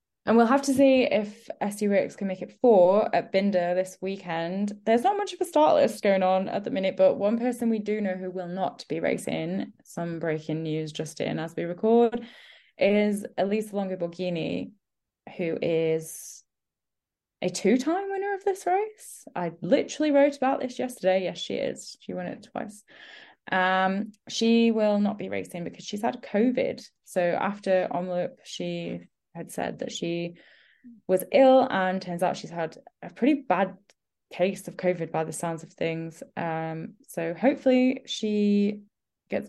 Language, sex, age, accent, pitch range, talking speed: English, female, 10-29, British, 180-235 Hz, 170 wpm